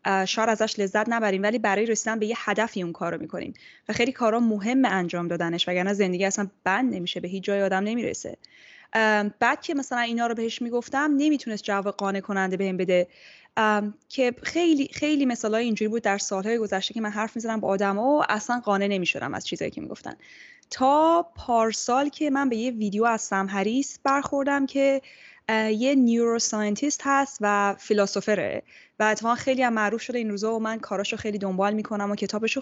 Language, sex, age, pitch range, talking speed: Persian, female, 10-29, 200-250 Hz, 180 wpm